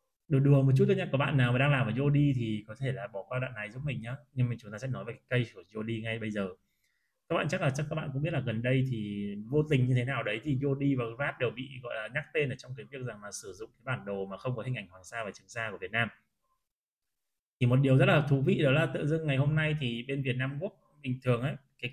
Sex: male